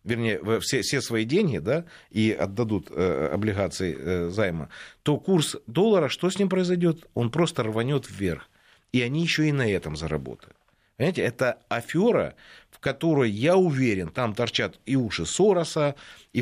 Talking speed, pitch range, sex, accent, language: 155 wpm, 125-195 Hz, male, native, Russian